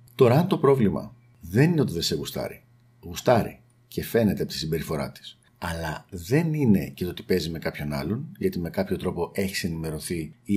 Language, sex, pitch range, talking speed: Greek, male, 95-120 Hz, 195 wpm